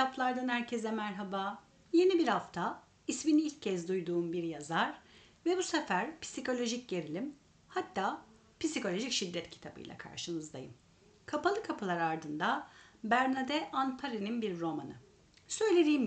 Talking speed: 110 wpm